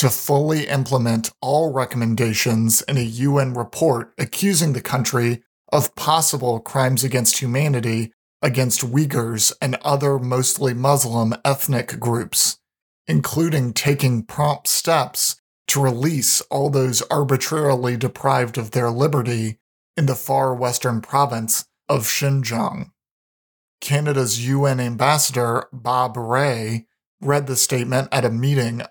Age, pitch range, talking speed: 40-59, 120-145 Hz, 115 wpm